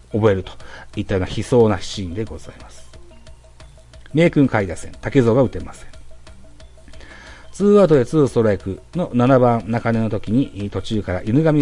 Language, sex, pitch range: Japanese, male, 95-135 Hz